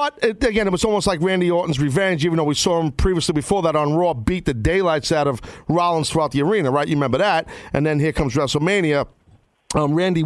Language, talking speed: English, 230 wpm